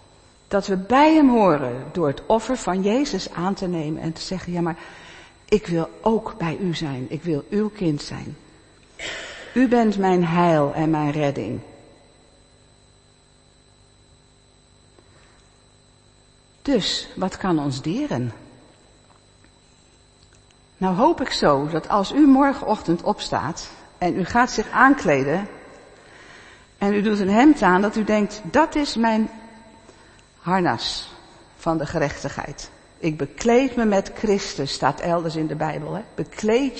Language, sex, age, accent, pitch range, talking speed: Dutch, female, 60-79, Dutch, 155-220 Hz, 135 wpm